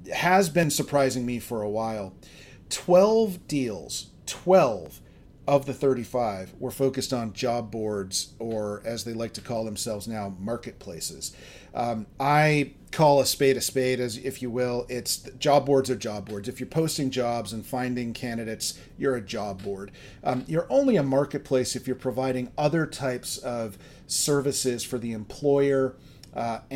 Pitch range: 110-135 Hz